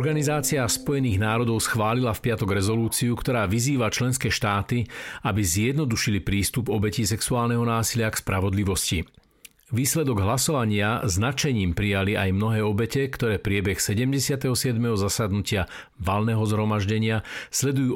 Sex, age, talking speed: male, 50-69, 110 wpm